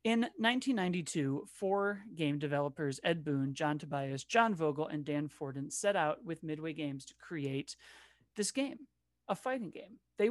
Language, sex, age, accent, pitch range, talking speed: English, male, 30-49, American, 150-215 Hz, 155 wpm